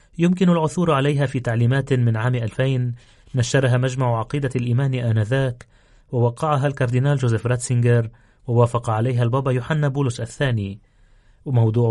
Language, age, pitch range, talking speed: Arabic, 30-49, 115-140 Hz, 120 wpm